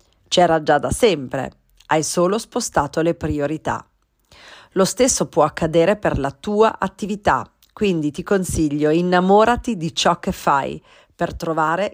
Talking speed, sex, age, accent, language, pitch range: 135 wpm, female, 40-59, native, Italian, 150-195 Hz